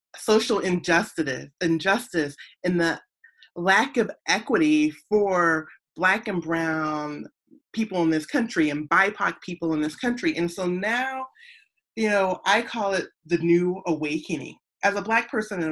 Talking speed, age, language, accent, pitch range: 145 wpm, 30-49, English, American, 160-220 Hz